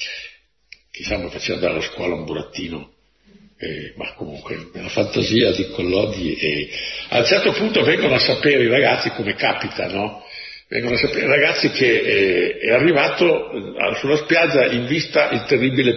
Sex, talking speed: male, 155 wpm